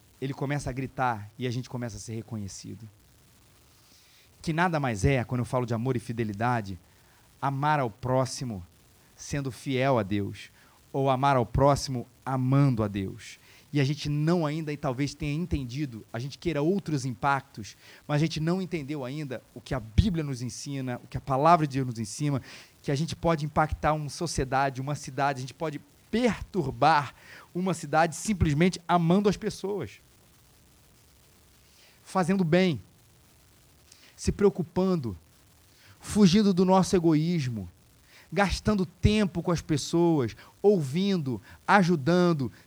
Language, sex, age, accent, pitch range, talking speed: Portuguese, male, 30-49, Brazilian, 125-185 Hz, 145 wpm